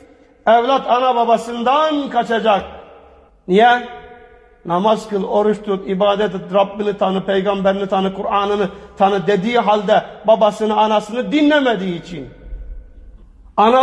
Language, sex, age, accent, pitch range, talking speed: Turkish, male, 50-69, native, 200-230 Hz, 105 wpm